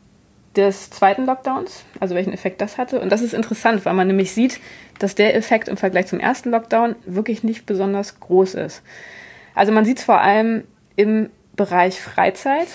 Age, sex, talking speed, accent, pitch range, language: 20-39, female, 180 wpm, German, 190-225 Hz, German